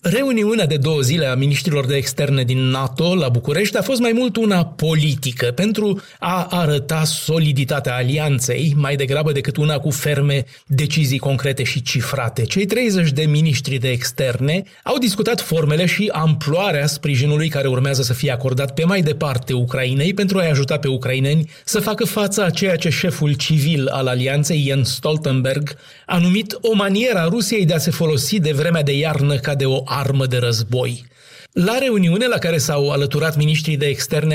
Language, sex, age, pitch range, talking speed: Romanian, male, 30-49, 140-175 Hz, 175 wpm